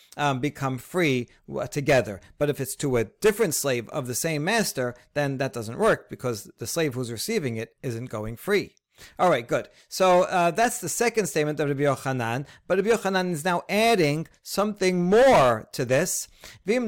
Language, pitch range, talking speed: English, 135-180 Hz, 180 wpm